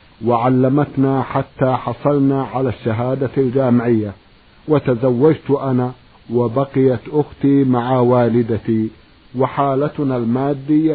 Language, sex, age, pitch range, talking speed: Arabic, male, 50-69, 125-145 Hz, 75 wpm